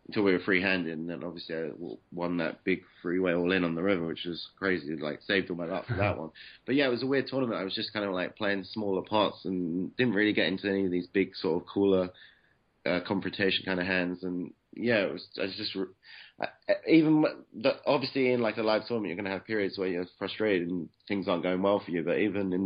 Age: 30-49